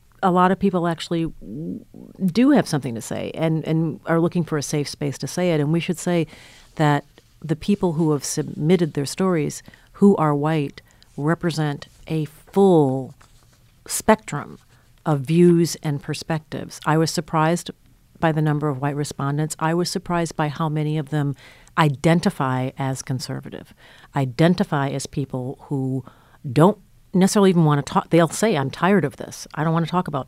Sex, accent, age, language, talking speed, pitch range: female, American, 50-69, English, 170 wpm, 135-165 Hz